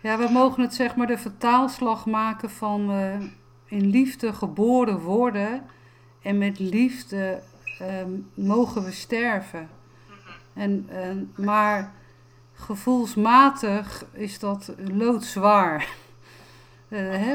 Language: Dutch